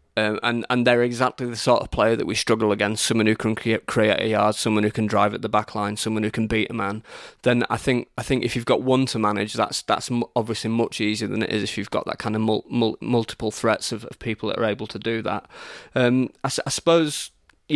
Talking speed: 255 wpm